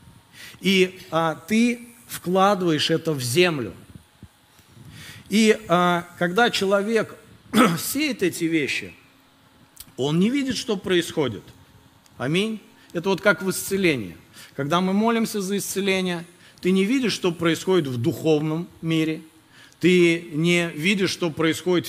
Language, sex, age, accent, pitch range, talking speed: Russian, male, 50-69, native, 150-190 Hz, 110 wpm